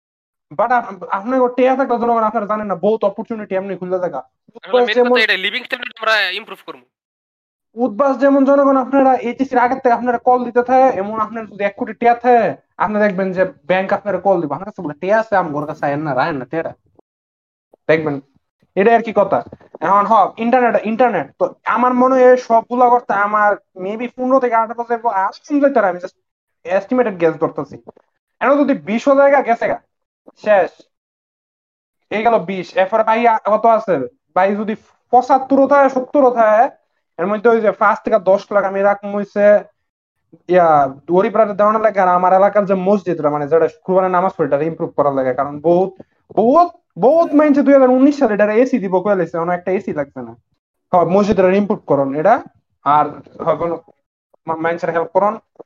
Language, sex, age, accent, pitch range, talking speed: Bengali, male, 20-39, native, 180-245 Hz, 55 wpm